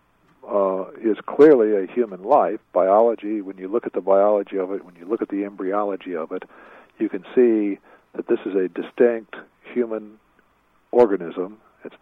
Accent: American